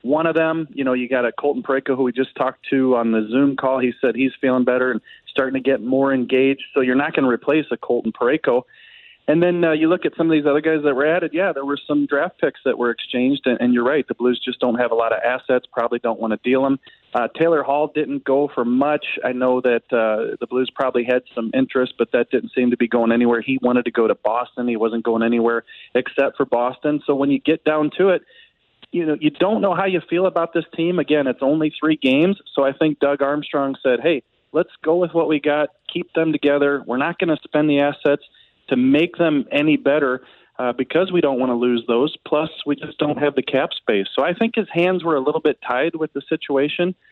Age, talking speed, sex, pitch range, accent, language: 30-49, 255 wpm, male, 125-155 Hz, American, English